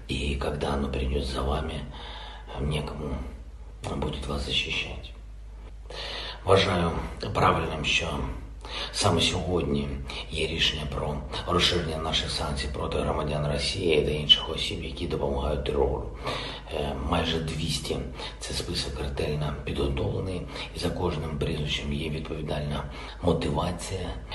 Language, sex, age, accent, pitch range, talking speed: Ukrainian, male, 50-69, native, 75-85 Hz, 110 wpm